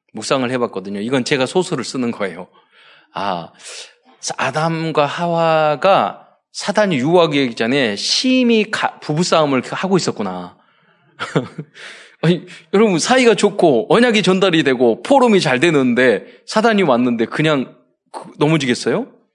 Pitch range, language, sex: 140-230 Hz, Korean, male